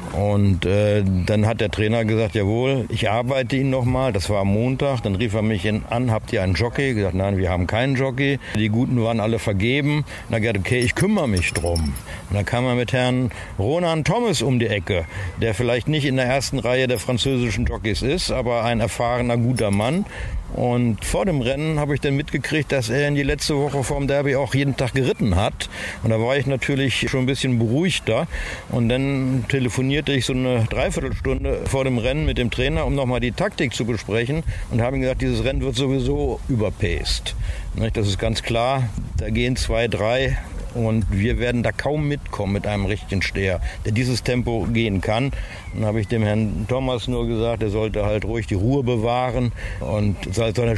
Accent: German